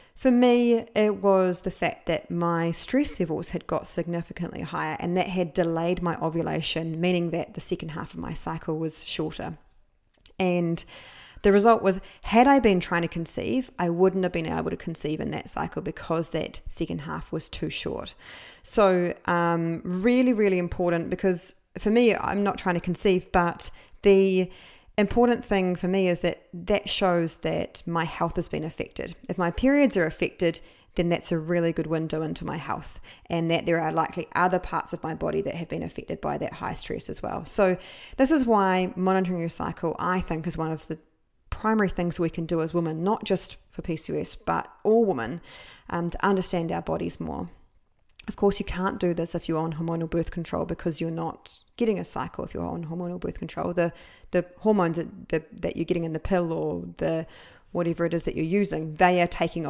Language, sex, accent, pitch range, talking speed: English, female, Australian, 165-190 Hz, 200 wpm